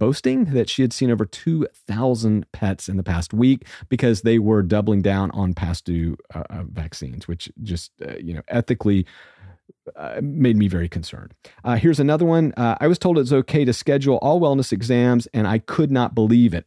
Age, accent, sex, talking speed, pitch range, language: 40-59, American, male, 195 wpm, 110-150 Hz, English